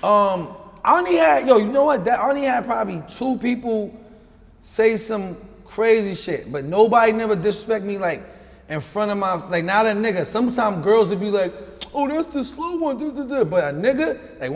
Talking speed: 195 wpm